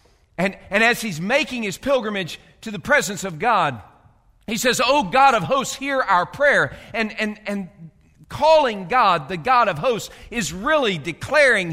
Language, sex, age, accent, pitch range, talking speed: English, male, 50-69, American, 205-280 Hz, 170 wpm